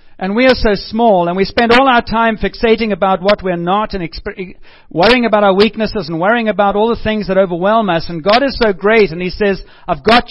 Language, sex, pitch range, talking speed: English, male, 170-215 Hz, 235 wpm